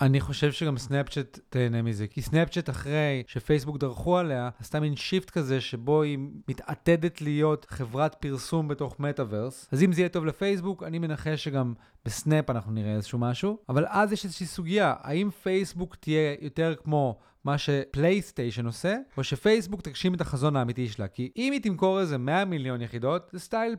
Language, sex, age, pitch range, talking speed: Hebrew, male, 30-49, 130-175 Hz, 170 wpm